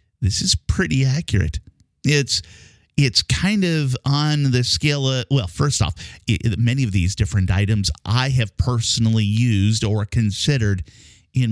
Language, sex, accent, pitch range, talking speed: English, male, American, 95-130 Hz, 145 wpm